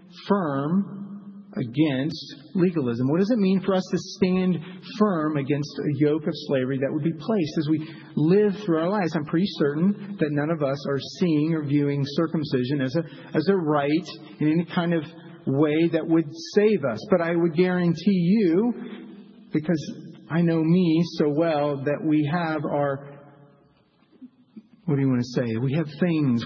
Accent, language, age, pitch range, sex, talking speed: American, English, 40-59, 140-175 Hz, male, 175 wpm